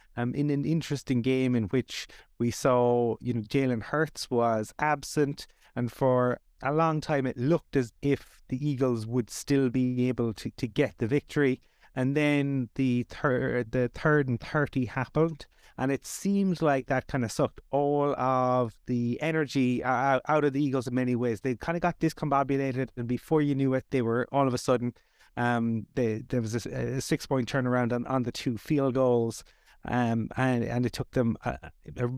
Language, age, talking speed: English, 30-49, 190 wpm